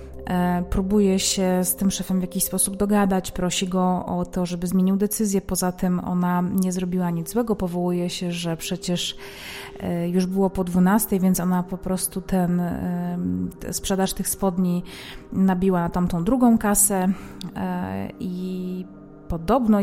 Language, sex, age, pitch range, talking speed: Polish, female, 30-49, 175-200 Hz, 140 wpm